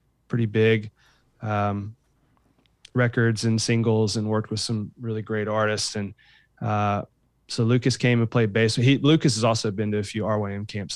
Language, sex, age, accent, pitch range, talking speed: English, male, 20-39, American, 110-125 Hz, 165 wpm